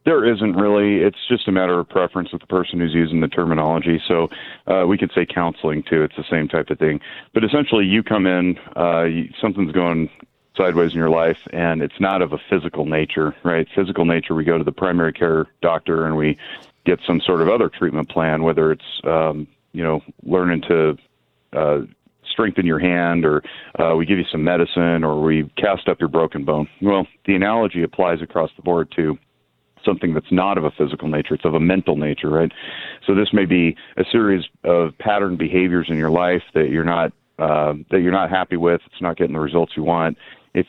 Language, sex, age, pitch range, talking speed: English, male, 40-59, 80-90 Hz, 210 wpm